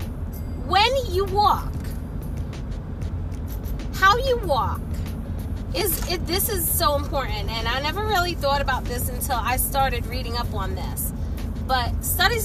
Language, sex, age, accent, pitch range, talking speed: English, female, 30-49, American, 80-115 Hz, 135 wpm